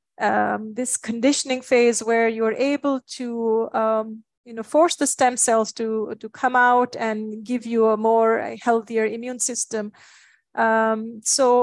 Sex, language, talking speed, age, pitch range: female, English, 155 wpm, 30-49, 225-260 Hz